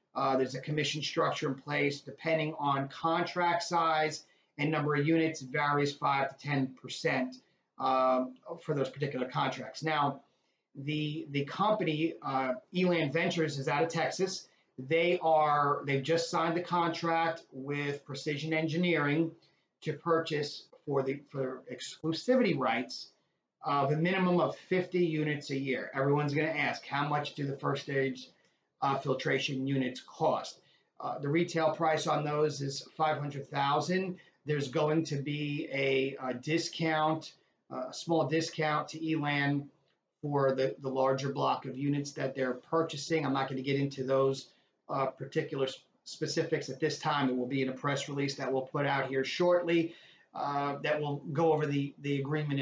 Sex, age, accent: male, 40-59, American